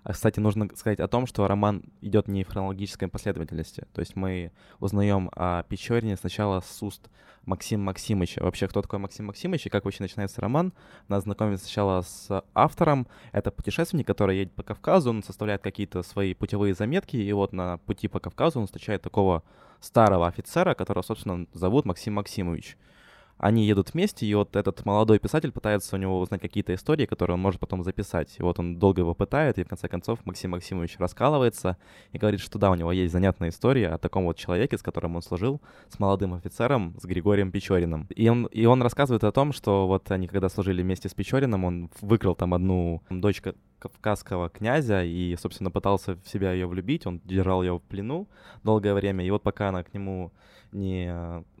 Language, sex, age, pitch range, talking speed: Ukrainian, male, 20-39, 90-105 Hz, 190 wpm